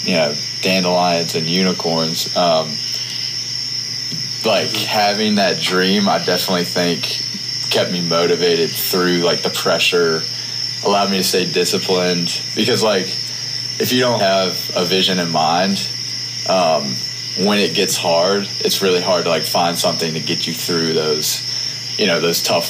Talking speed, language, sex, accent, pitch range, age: 150 wpm, English, male, American, 85-120 Hz, 20-39